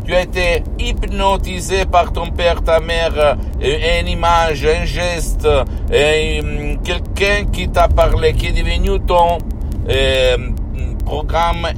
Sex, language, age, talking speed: male, Italian, 60-79, 115 wpm